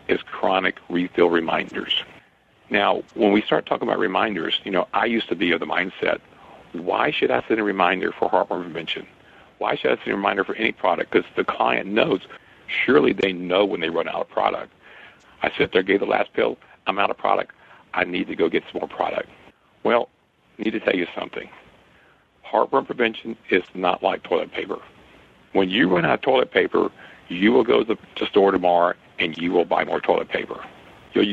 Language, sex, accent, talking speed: English, male, American, 205 wpm